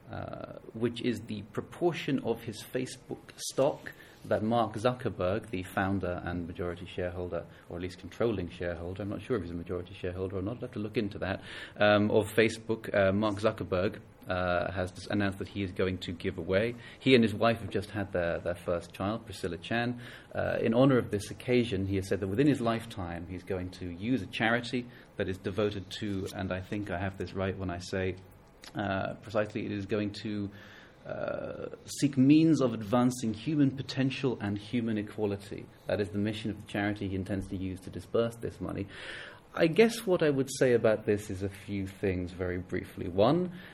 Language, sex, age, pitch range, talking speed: English, male, 30-49, 95-115 Hz, 200 wpm